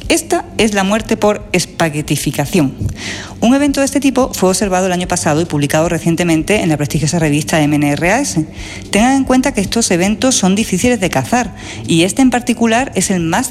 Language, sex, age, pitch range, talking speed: Spanish, female, 40-59, 160-230 Hz, 180 wpm